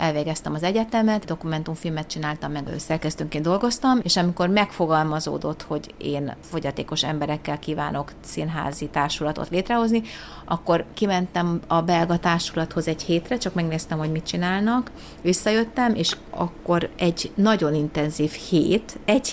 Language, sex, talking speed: Hungarian, female, 125 wpm